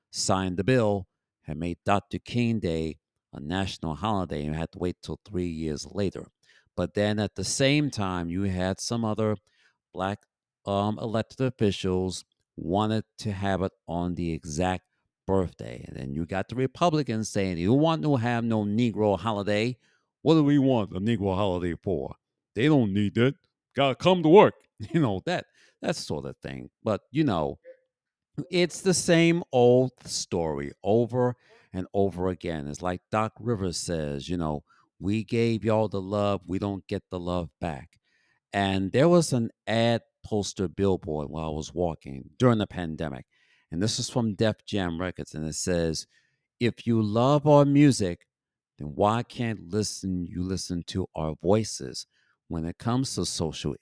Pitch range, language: 90-120 Hz, English